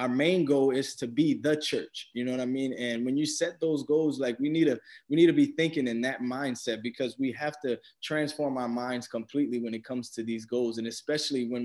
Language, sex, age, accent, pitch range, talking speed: English, male, 20-39, American, 120-145 Hz, 245 wpm